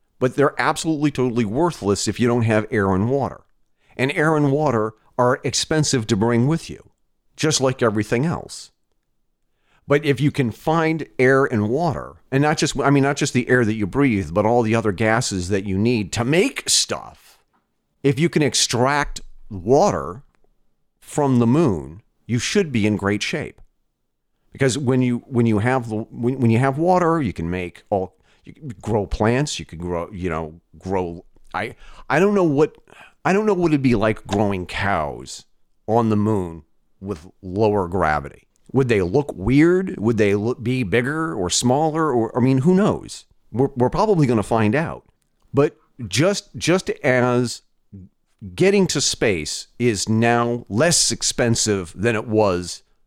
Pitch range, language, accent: 105-145 Hz, English, American